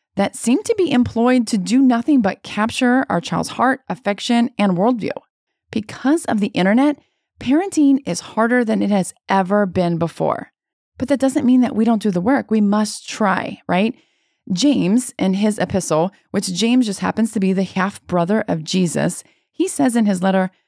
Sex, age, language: female, 20-39, English